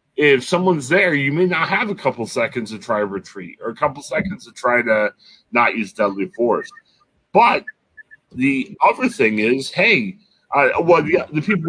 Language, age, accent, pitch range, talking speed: English, 30-49, American, 130-190 Hz, 185 wpm